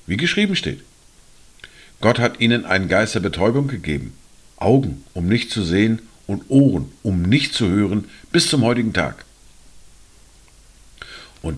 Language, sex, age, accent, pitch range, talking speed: German, male, 50-69, German, 85-125 Hz, 140 wpm